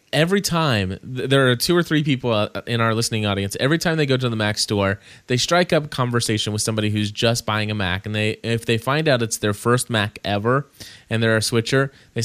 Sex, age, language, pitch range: male, 20-39, English, 100-120 Hz